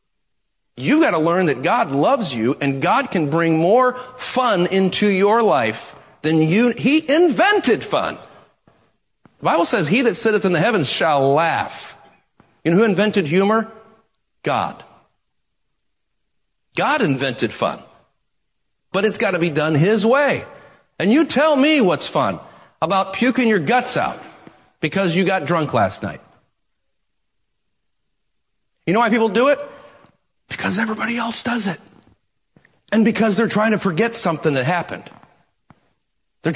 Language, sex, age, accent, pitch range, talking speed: English, male, 40-59, American, 155-225 Hz, 145 wpm